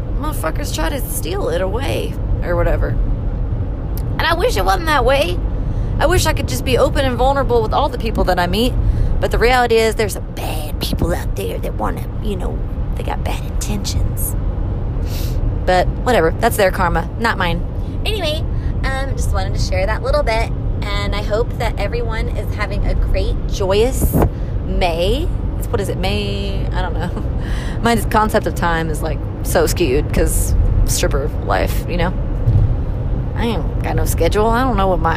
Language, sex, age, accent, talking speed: English, female, 30-49, American, 185 wpm